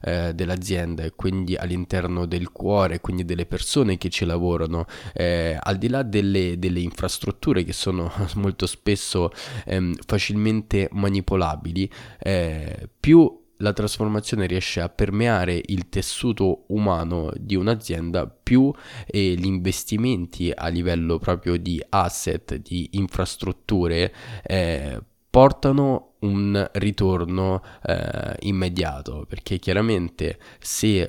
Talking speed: 110 wpm